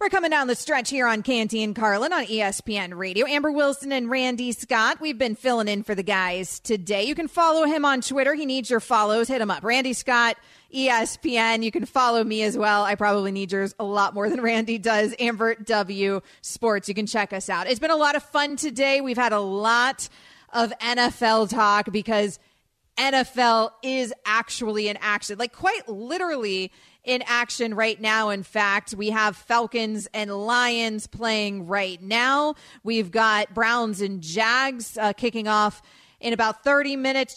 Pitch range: 210-260 Hz